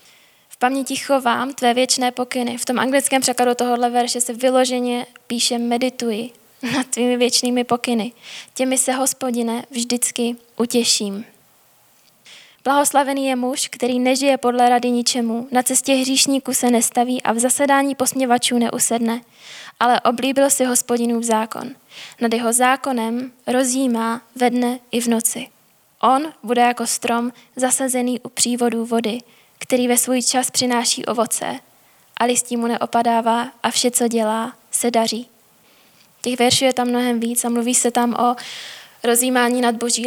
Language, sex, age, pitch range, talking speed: Czech, female, 10-29, 235-255 Hz, 140 wpm